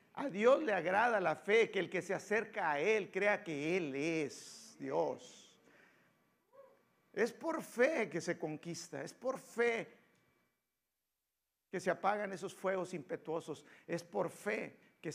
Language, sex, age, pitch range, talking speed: Spanish, male, 50-69, 170-215 Hz, 145 wpm